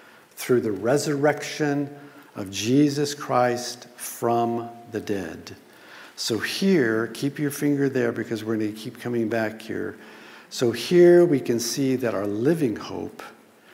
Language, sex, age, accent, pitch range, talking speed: English, male, 50-69, American, 110-140 Hz, 140 wpm